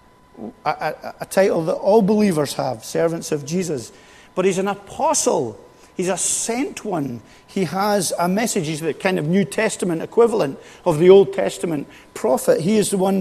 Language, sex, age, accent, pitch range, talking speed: English, male, 50-69, British, 170-215 Hz, 175 wpm